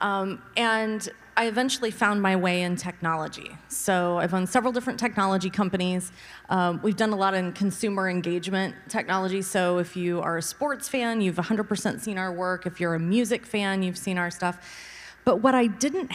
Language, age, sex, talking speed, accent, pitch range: English, 30-49, female, 185 wpm, American, 175-220 Hz